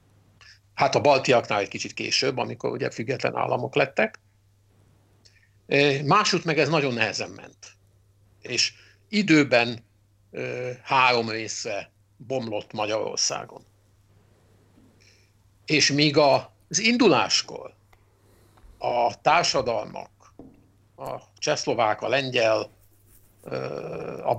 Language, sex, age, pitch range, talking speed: Hungarian, male, 60-79, 100-135 Hz, 95 wpm